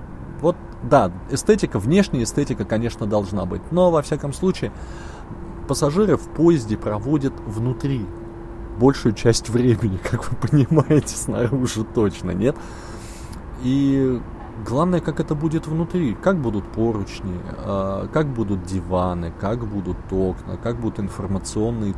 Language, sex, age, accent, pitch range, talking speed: Russian, male, 20-39, native, 95-135 Hz, 115 wpm